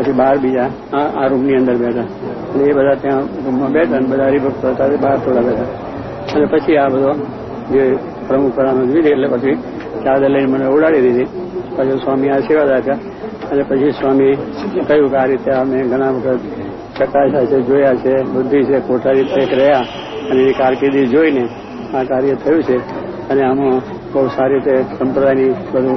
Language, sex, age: English, male, 60-79